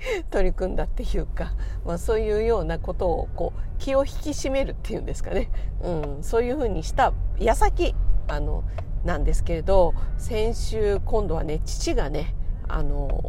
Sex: female